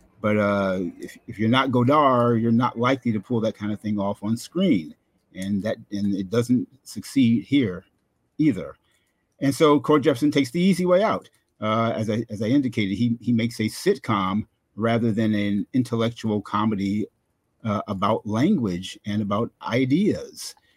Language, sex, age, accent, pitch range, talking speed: English, male, 50-69, American, 105-125 Hz, 170 wpm